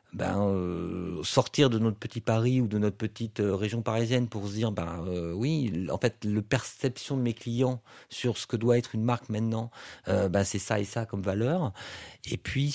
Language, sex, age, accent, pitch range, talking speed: English, male, 50-69, French, 100-120 Hz, 215 wpm